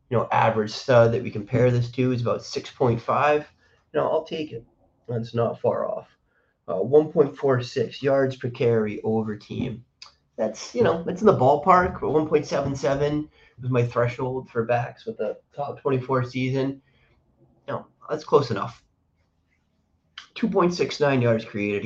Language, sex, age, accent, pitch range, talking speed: English, male, 30-49, American, 110-135 Hz, 150 wpm